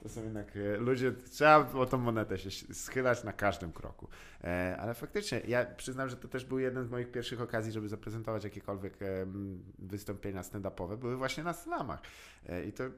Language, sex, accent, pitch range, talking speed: Polish, male, native, 90-120 Hz, 170 wpm